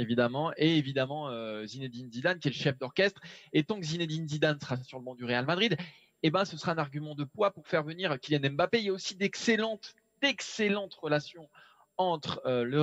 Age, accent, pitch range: 20-39, French, 130-175 Hz